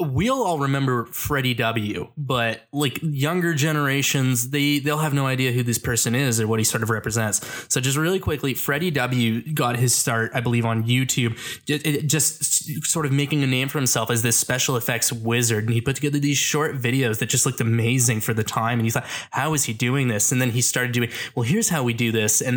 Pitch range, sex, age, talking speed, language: 120-145 Hz, male, 20-39, 225 wpm, English